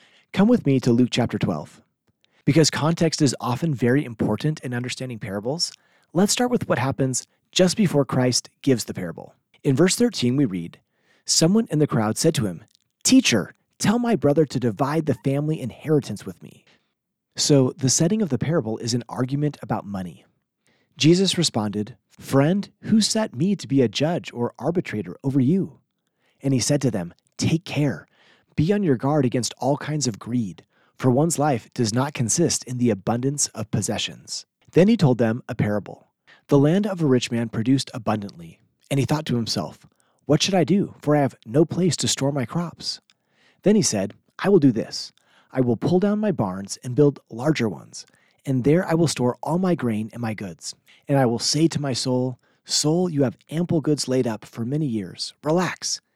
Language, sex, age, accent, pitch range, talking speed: English, male, 30-49, American, 120-155 Hz, 190 wpm